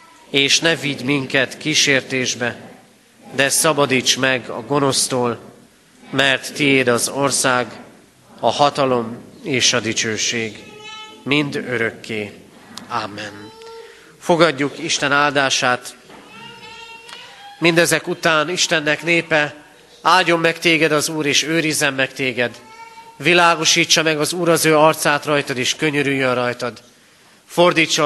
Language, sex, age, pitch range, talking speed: Hungarian, male, 40-59, 125-155 Hz, 105 wpm